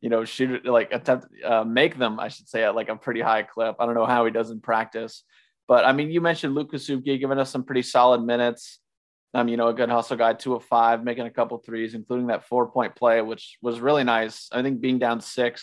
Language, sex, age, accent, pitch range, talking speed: English, male, 30-49, American, 110-130 Hz, 250 wpm